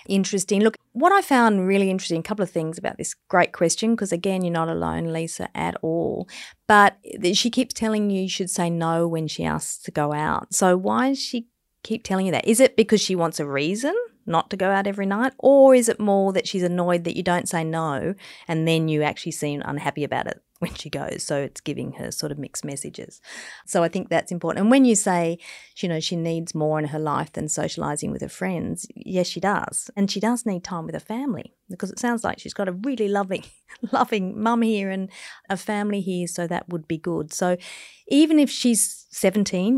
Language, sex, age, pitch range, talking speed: English, female, 30-49, 175-225 Hz, 225 wpm